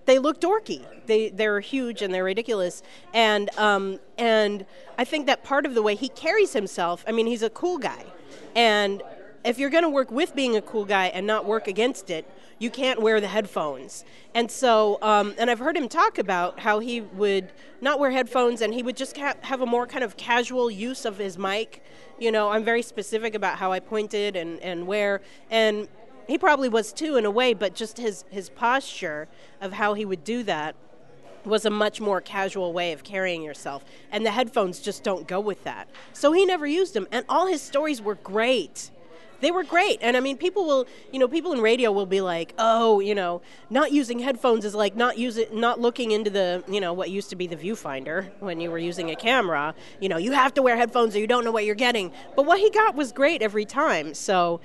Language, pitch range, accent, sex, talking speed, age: English, 200-255 Hz, American, female, 230 wpm, 40-59